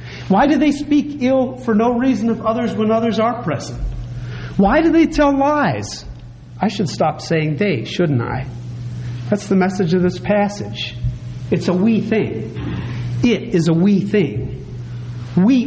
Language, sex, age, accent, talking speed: English, male, 50-69, American, 160 wpm